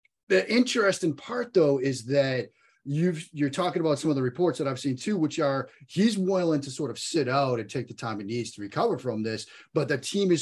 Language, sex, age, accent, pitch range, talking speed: English, male, 30-49, American, 125-170 Hz, 235 wpm